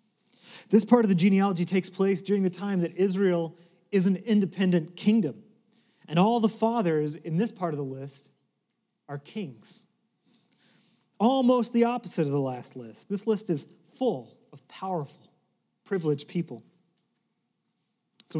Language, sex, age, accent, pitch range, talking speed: English, male, 30-49, American, 150-200 Hz, 145 wpm